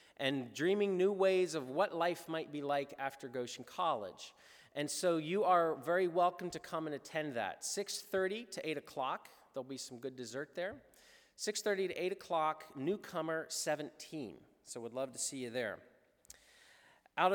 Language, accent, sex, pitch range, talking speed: English, American, male, 120-165 Hz, 165 wpm